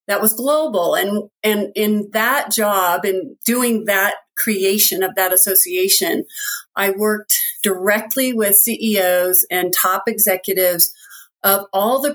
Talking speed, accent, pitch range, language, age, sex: 130 wpm, American, 190-225 Hz, English, 40-59, female